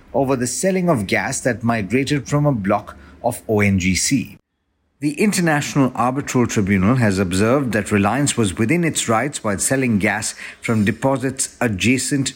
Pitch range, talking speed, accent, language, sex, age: 105-140 Hz, 145 wpm, Indian, English, male, 50-69